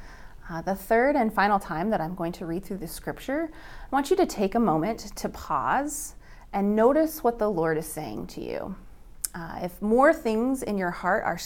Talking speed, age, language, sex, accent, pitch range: 210 wpm, 30-49, English, female, American, 175-235 Hz